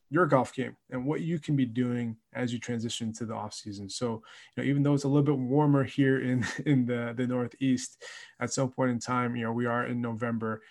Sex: male